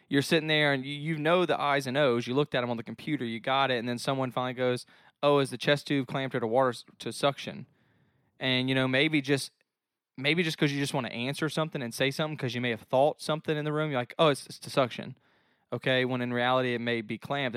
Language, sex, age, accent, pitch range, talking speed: English, male, 20-39, American, 115-140 Hz, 265 wpm